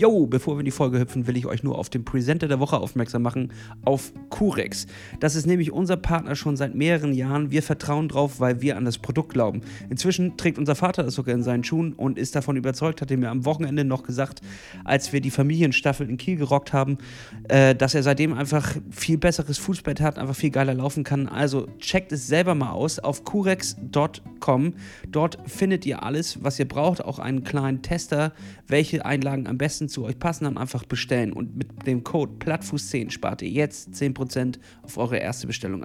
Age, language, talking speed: 30-49, German, 205 wpm